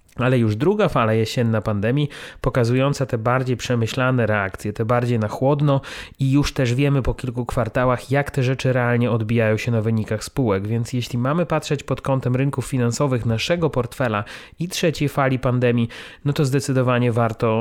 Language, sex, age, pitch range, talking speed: Polish, male, 30-49, 115-135 Hz, 165 wpm